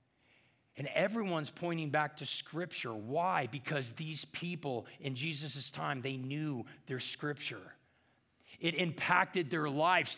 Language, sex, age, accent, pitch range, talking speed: English, male, 40-59, American, 140-235 Hz, 125 wpm